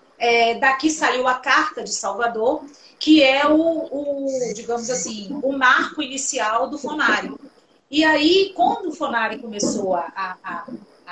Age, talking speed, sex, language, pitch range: 40-59, 140 wpm, female, Portuguese, 210-280 Hz